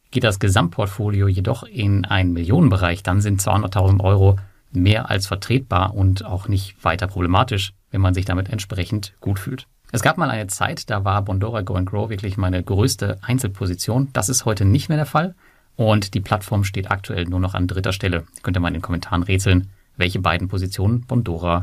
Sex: male